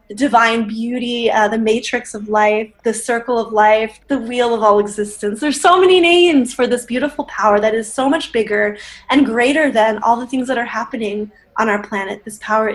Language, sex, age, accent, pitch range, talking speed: English, female, 10-29, American, 215-265 Hz, 205 wpm